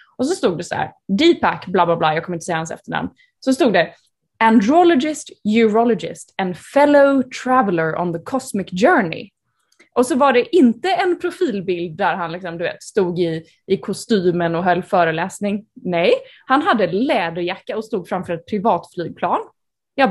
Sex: female